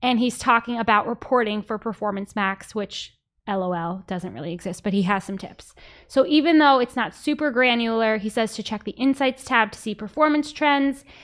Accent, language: American, English